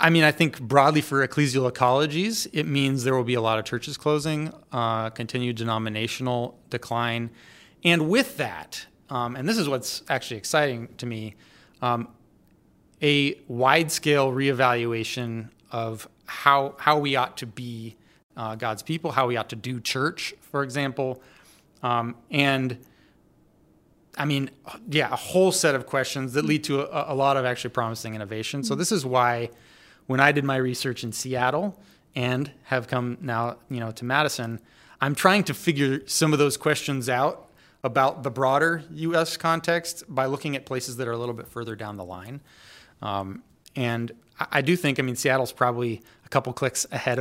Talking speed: 170 wpm